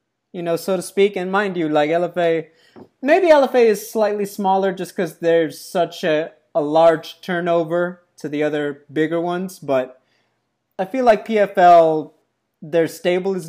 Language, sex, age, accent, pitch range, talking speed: English, male, 20-39, American, 150-190 Hz, 160 wpm